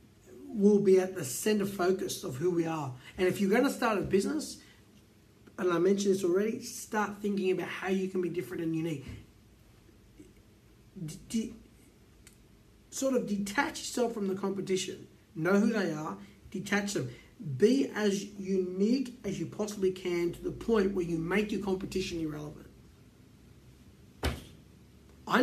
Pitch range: 150-200 Hz